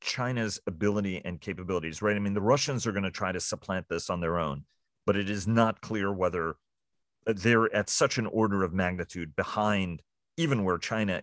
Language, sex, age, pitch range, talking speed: English, male, 40-59, 85-105 Hz, 190 wpm